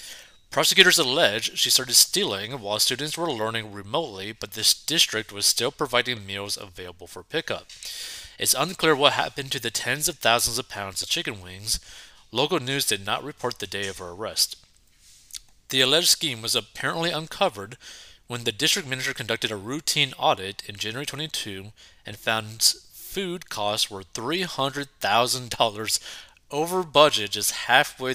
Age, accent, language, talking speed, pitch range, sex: 30-49, American, English, 150 wpm, 105-140 Hz, male